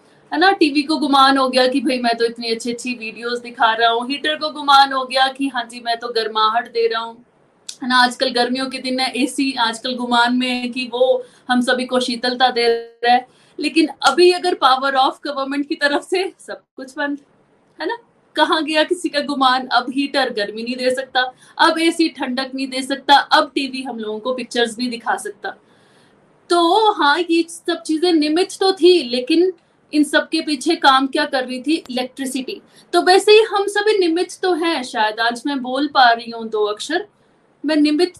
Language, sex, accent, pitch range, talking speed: Hindi, female, native, 250-335 Hz, 200 wpm